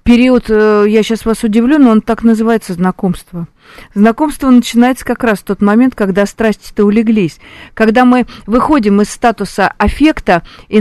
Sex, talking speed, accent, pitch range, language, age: female, 155 wpm, native, 190-230 Hz, Russian, 40-59